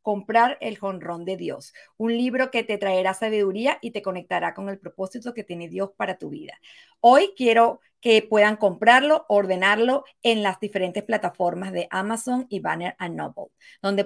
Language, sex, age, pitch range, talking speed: Spanish, female, 40-59, 190-245 Hz, 165 wpm